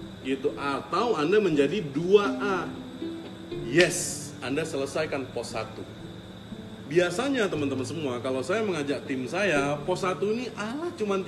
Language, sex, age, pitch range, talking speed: Indonesian, male, 30-49, 140-205 Hz, 115 wpm